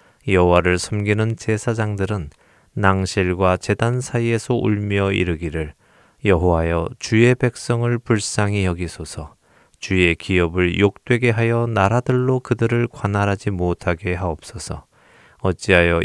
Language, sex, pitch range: Korean, male, 85-115 Hz